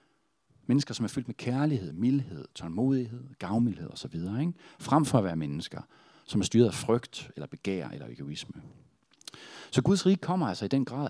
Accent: native